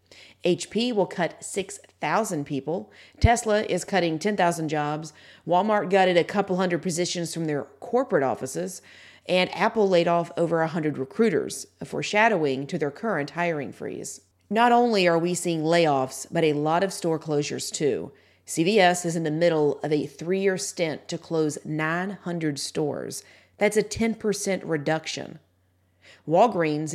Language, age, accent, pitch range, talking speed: English, 40-59, American, 150-180 Hz, 145 wpm